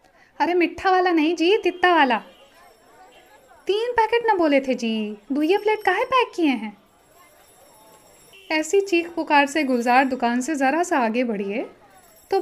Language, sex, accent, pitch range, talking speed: Hindi, female, native, 235-340 Hz, 150 wpm